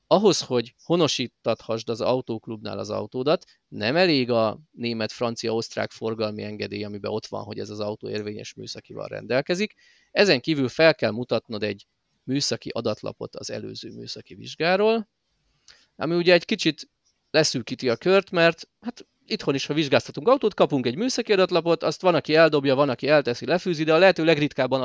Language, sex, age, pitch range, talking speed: Hungarian, male, 30-49, 120-160 Hz, 155 wpm